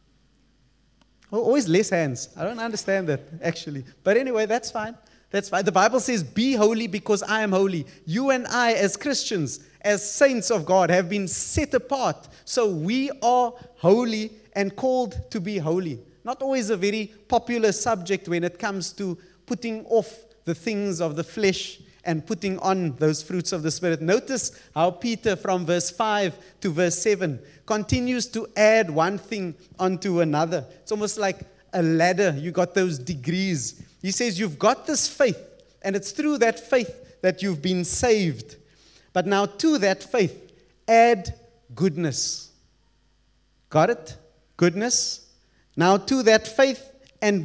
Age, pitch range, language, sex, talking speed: 30-49, 170-225 Hz, English, male, 160 wpm